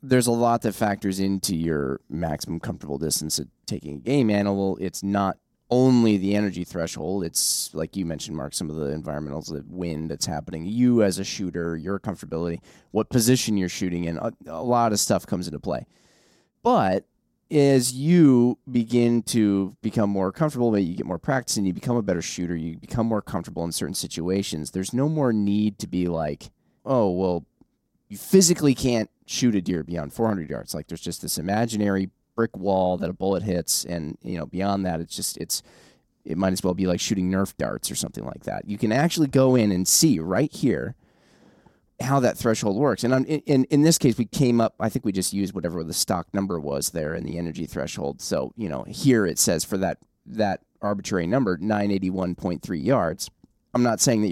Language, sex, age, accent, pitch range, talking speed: English, male, 20-39, American, 90-120 Hz, 200 wpm